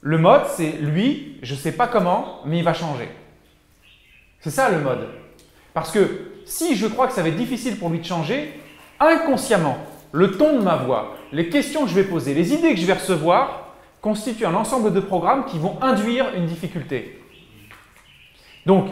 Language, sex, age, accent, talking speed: French, male, 30-49, French, 190 wpm